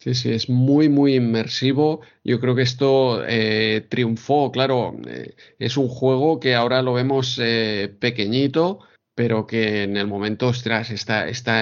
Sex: male